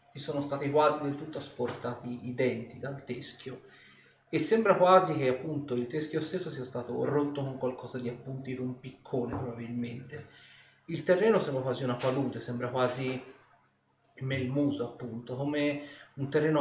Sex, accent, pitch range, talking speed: male, native, 125-150 Hz, 150 wpm